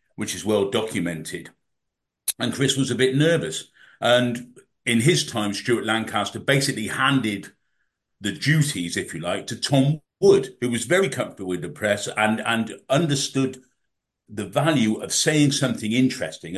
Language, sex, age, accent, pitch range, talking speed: English, male, 50-69, British, 105-135 Hz, 150 wpm